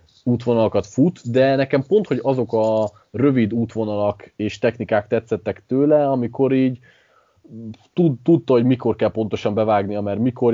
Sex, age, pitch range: male, 20-39, 105-130 Hz